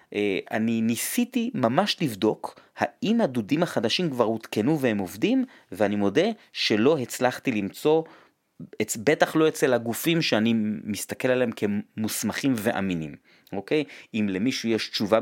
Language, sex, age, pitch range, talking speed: Hebrew, male, 30-49, 105-145 Hz, 120 wpm